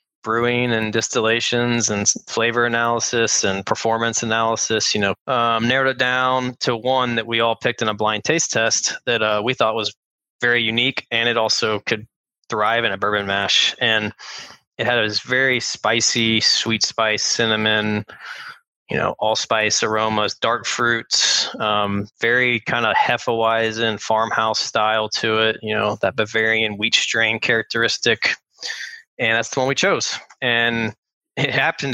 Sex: male